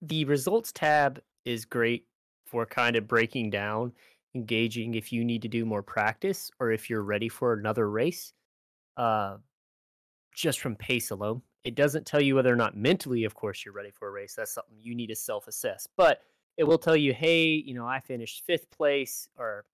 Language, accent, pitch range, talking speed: English, American, 115-145 Hz, 195 wpm